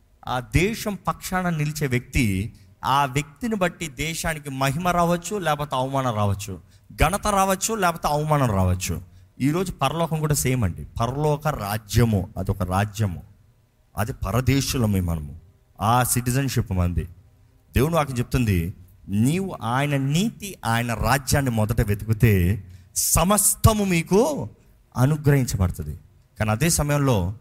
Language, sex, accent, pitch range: Telugu, male, native, 105-150 Hz